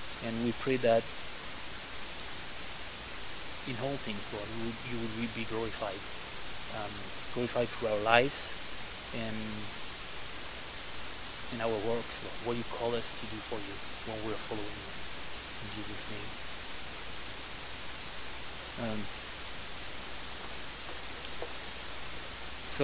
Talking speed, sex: 110 wpm, male